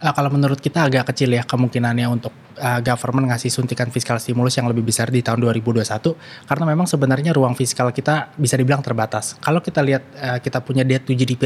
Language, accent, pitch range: Indonesian, native, 125-150 Hz